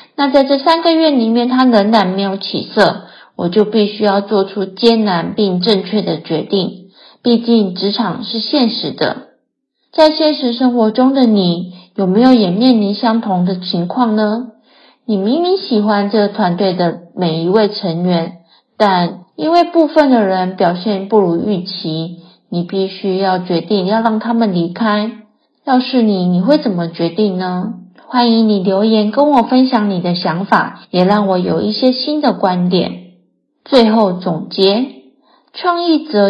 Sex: female